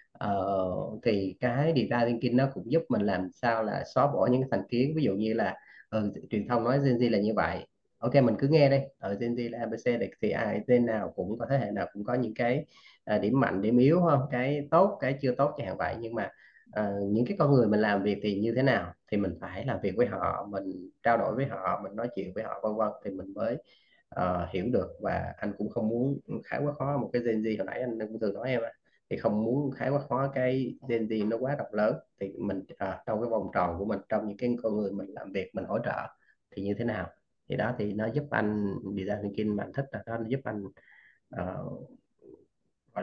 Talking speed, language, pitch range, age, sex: 255 wpm, Vietnamese, 100-125 Hz, 20-39, male